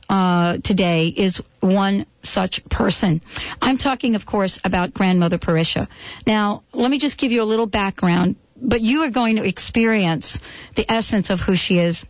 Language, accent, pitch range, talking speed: English, American, 185-225 Hz, 170 wpm